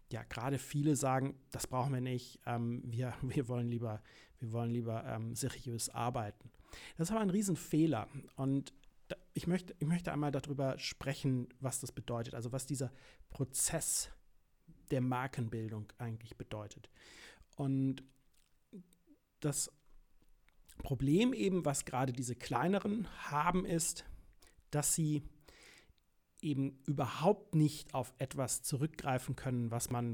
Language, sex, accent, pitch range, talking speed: German, male, German, 120-150 Hz, 120 wpm